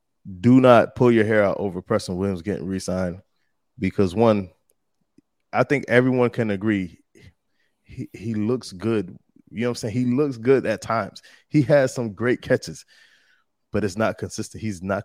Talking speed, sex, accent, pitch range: 170 wpm, male, American, 95-120 Hz